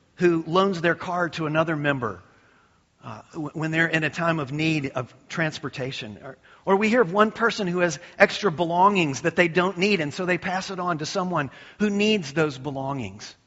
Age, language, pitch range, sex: 40-59, English, 130-195 Hz, male